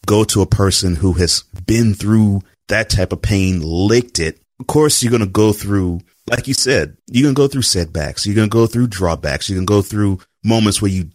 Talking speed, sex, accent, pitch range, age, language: 230 wpm, male, American, 90-110 Hz, 30-49, English